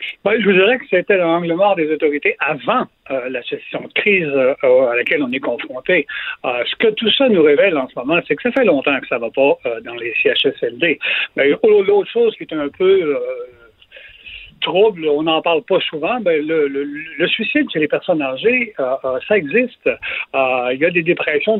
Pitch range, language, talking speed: 165-270 Hz, French, 220 wpm